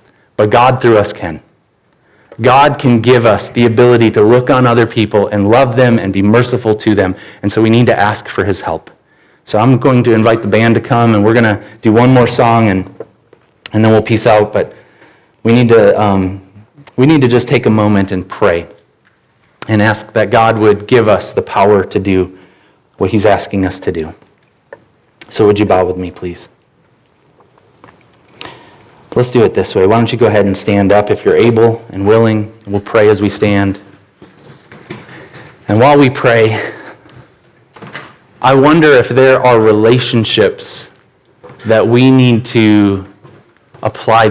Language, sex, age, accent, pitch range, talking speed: English, male, 30-49, American, 105-120 Hz, 175 wpm